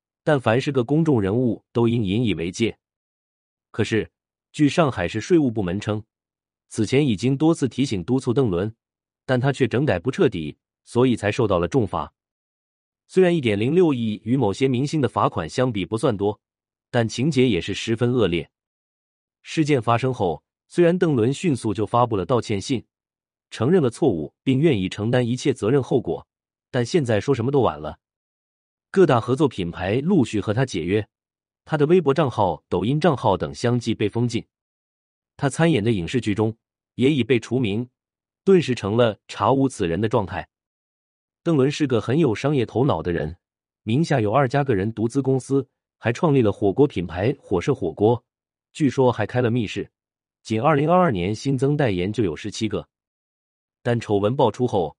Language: Chinese